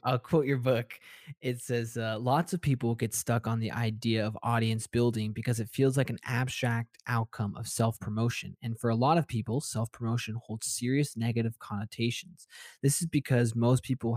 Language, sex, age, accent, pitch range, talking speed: English, male, 20-39, American, 115-135 Hz, 180 wpm